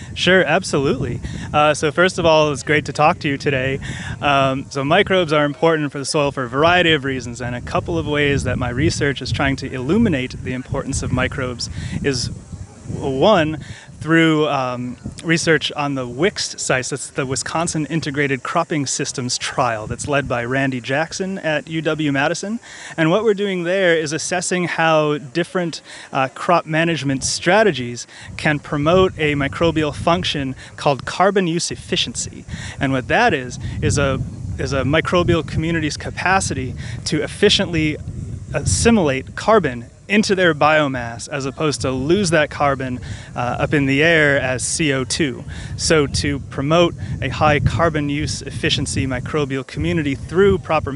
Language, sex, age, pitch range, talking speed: English, male, 30-49, 130-160 Hz, 155 wpm